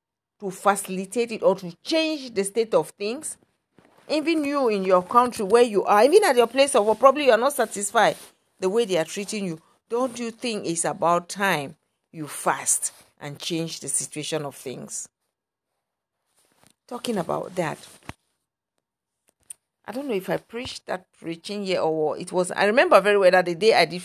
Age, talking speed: 50-69, 180 wpm